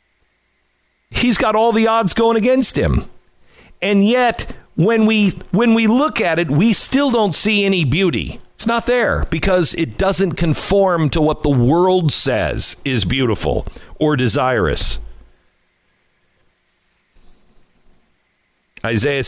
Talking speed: 125 wpm